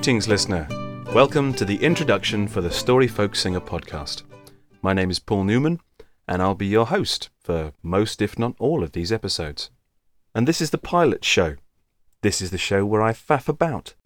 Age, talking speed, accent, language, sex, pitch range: 30-49, 190 wpm, British, English, male, 85-115 Hz